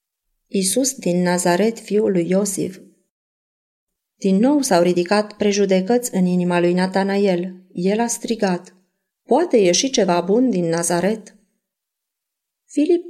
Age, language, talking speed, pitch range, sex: 30-49, Romanian, 115 wpm, 180-225 Hz, female